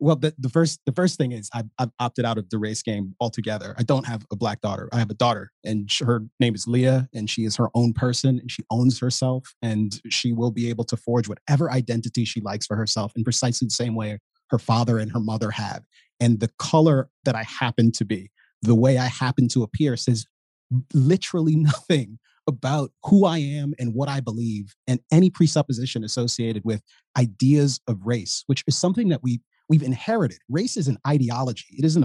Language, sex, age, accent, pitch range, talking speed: English, male, 30-49, American, 115-145 Hz, 210 wpm